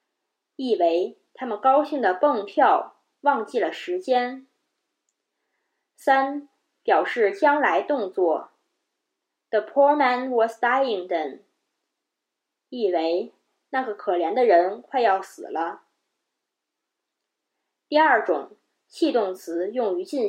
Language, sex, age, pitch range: Chinese, female, 20-39, 220-355 Hz